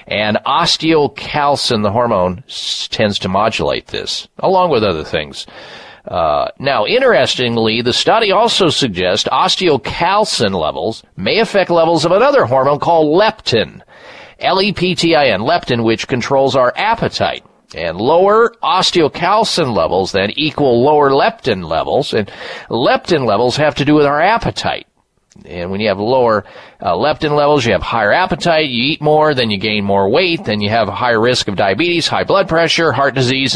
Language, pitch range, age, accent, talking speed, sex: English, 120-165 Hz, 40-59, American, 155 wpm, male